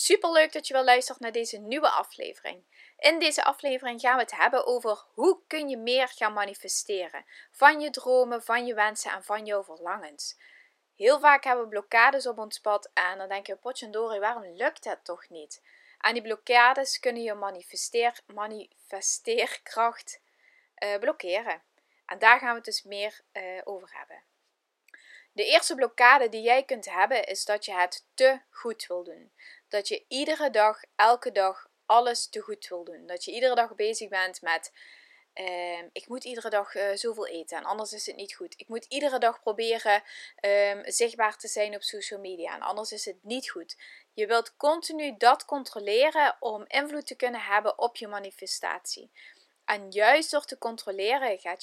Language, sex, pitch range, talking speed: Dutch, female, 200-265 Hz, 180 wpm